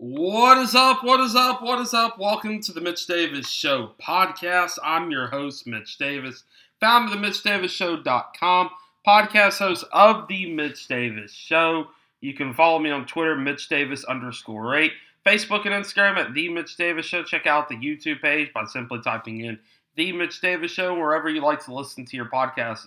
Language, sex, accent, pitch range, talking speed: English, male, American, 125-180 Hz, 185 wpm